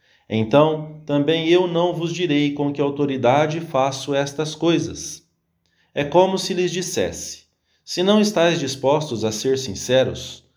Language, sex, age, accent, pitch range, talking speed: English, male, 40-59, Brazilian, 120-165 Hz, 135 wpm